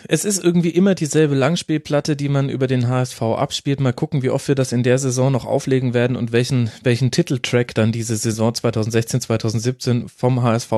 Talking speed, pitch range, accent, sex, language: 195 wpm, 115-145 Hz, German, male, German